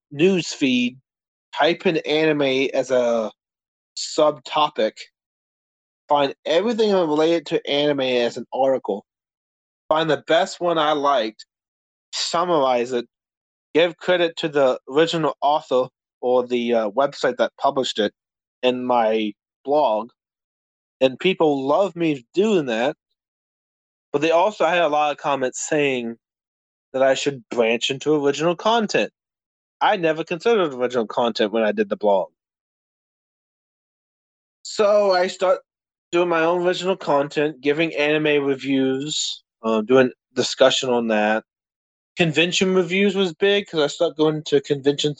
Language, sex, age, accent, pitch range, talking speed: English, male, 20-39, American, 120-160 Hz, 130 wpm